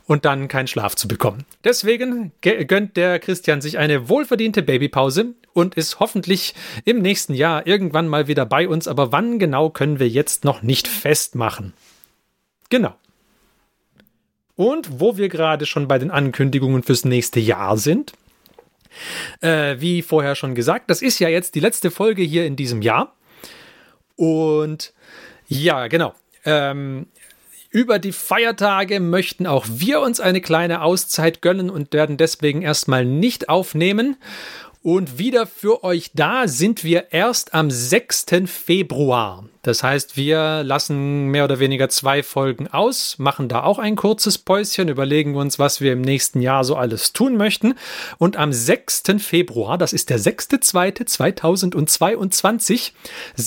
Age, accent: 40-59, German